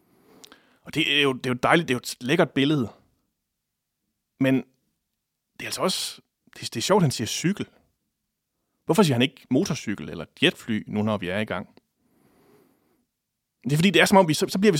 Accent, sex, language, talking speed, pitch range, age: Danish, male, English, 205 wpm, 120-175 Hz, 30-49